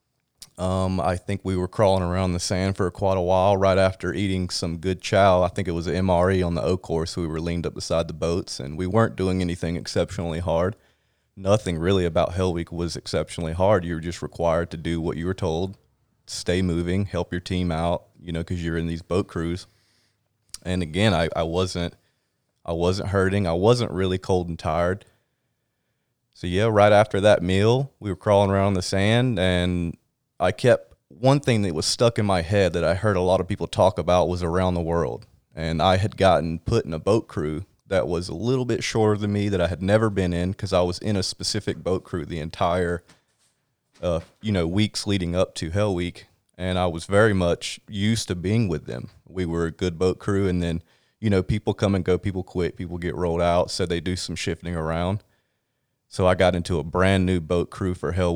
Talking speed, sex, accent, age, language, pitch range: 220 wpm, male, American, 30-49, English, 85-100 Hz